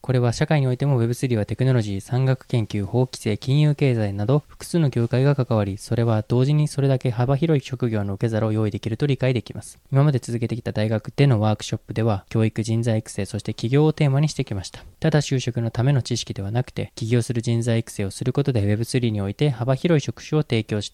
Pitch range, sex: 115-140 Hz, male